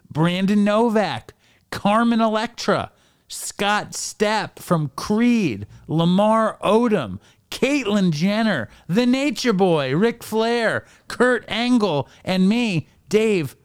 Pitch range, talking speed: 155-205 Hz, 95 wpm